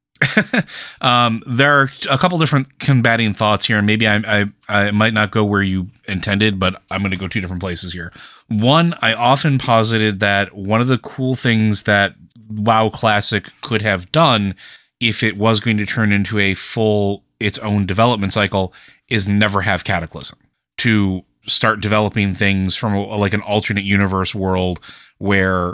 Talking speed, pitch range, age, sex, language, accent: 170 wpm, 95-110 Hz, 30-49, male, English, American